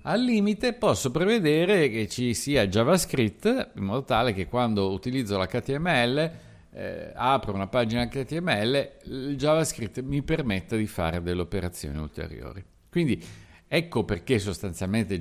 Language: Italian